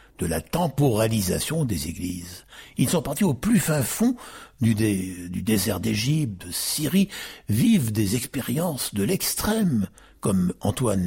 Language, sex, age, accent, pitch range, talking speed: French, male, 60-79, French, 100-160 Hz, 140 wpm